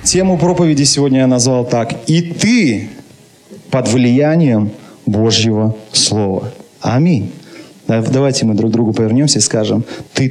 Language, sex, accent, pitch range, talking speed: Russian, male, native, 115-155 Hz, 130 wpm